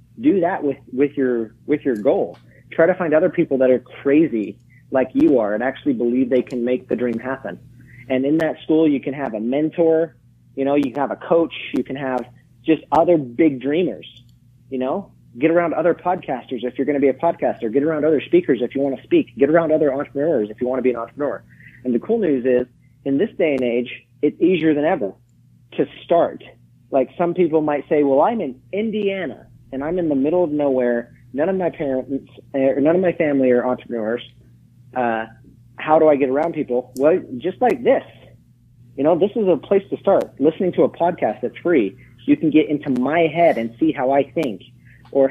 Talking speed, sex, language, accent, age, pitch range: 215 wpm, male, English, American, 30-49, 125-160 Hz